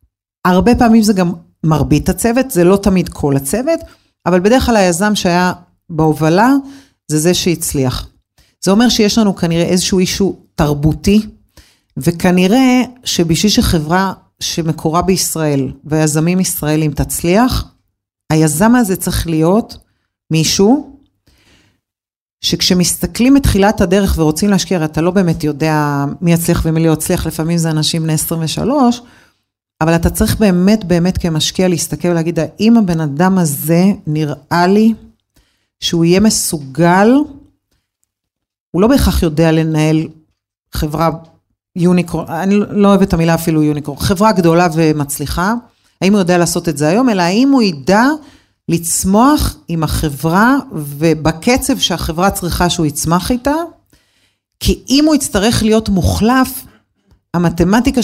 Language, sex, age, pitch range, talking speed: Hebrew, female, 40-59, 155-205 Hz, 125 wpm